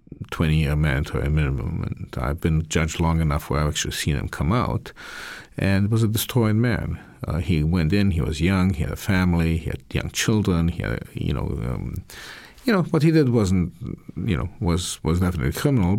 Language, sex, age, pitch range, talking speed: English, male, 50-69, 80-105 Hz, 220 wpm